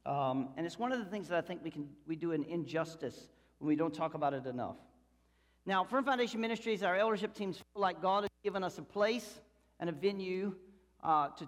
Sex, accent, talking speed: male, American, 225 wpm